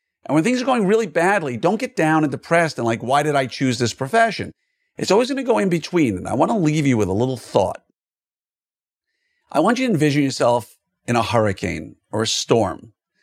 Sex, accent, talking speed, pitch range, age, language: male, American, 220 wpm, 130-170 Hz, 50-69, English